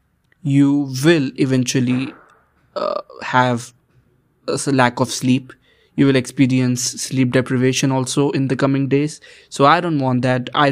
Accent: Indian